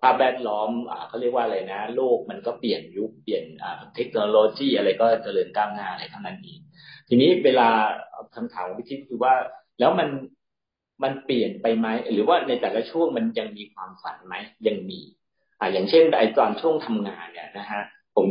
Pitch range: 115-170 Hz